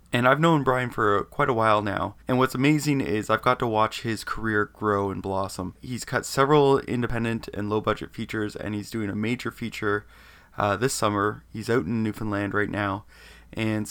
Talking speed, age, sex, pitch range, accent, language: 195 wpm, 20-39, male, 105-125 Hz, American, English